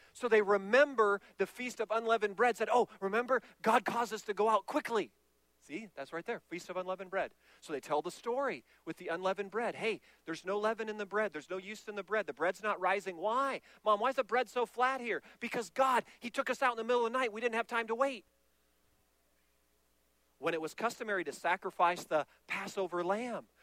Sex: male